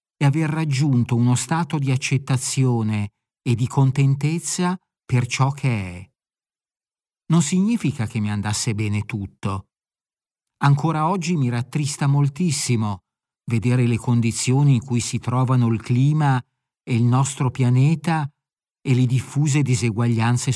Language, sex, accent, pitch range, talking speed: Italian, male, native, 115-150 Hz, 125 wpm